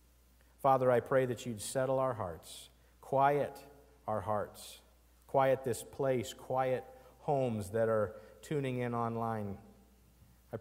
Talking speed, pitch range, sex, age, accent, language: 125 wpm, 75-125 Hz, male, 50-69, American, English